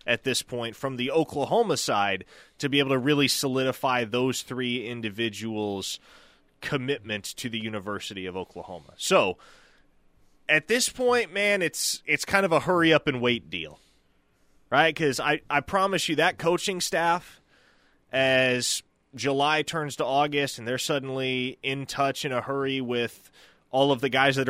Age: 20-39